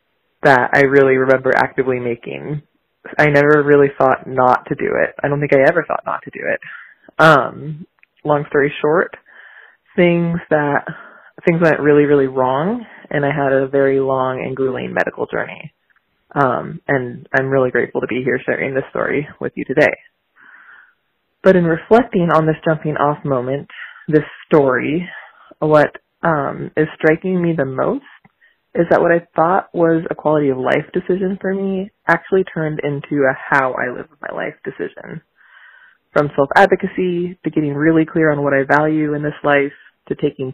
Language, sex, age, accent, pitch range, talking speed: English, female, 20-39, American, 140-170 Hz, 170 wpm